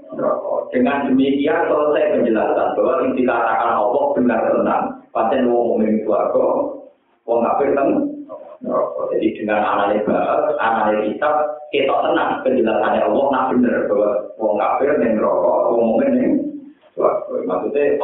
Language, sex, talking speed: Indonesian, male, 115 wpm